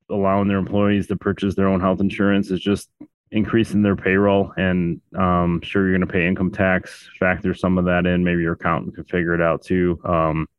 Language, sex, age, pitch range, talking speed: English, male, 30-49, 90-100 Hz, 215 wpm